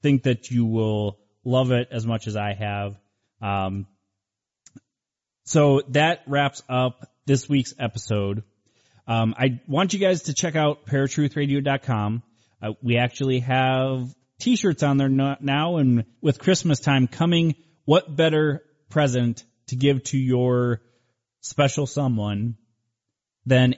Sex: male